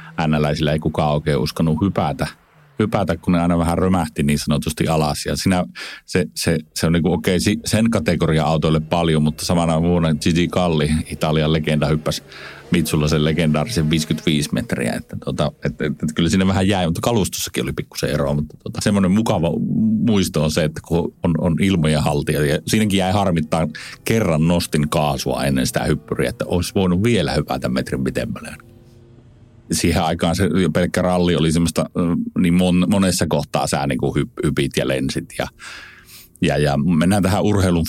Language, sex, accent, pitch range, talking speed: Finnish, male, native, 75-90 Hz, 170 wpm